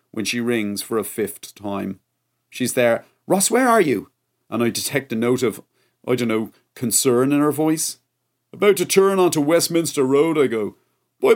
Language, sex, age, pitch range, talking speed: English, male, 40-59, 125-170 Hz, 185 wpm